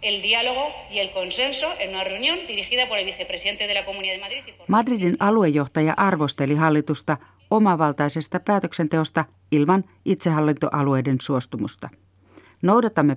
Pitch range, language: 135-180 Hz, Finnish